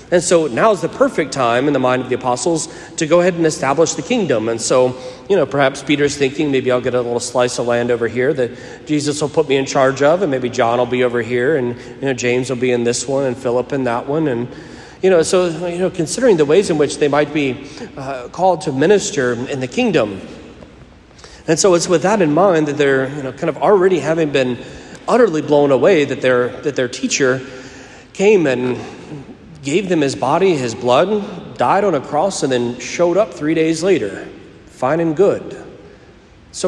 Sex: male